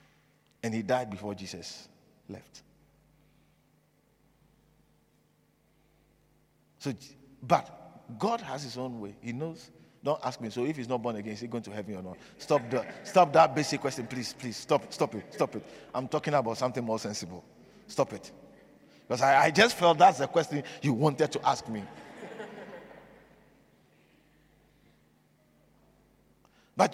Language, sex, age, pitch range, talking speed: English, male, 50-69, 110-175 Hz, 145 wpm